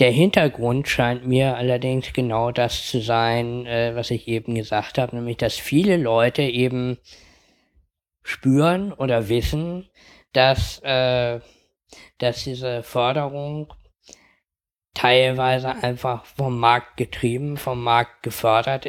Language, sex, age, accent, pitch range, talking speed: German, male, 10-29, German, 115-135 Hz, 115 wpm